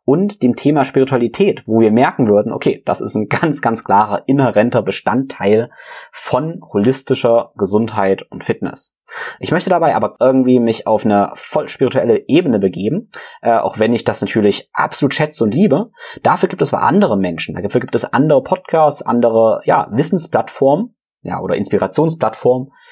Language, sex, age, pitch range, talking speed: German, male, 30-49, 105-135 Hz, 155 wpm